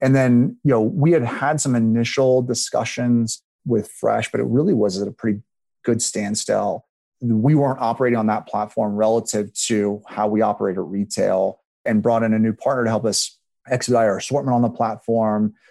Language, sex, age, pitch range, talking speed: English, male, 30-49, 105-125 Hz, 185 wpm